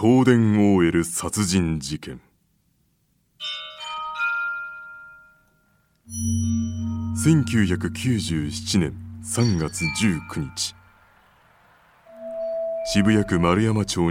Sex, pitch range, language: male, 85-120 Hz, Japanese